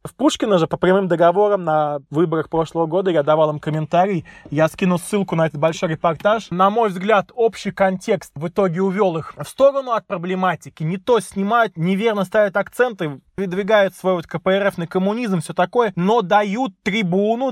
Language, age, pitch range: Russian, 20-39, 170-205 Hz